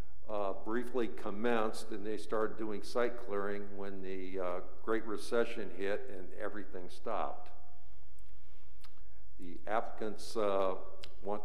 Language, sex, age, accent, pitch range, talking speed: English, male, 50-69, American, 95-110 Hz, 115 wpm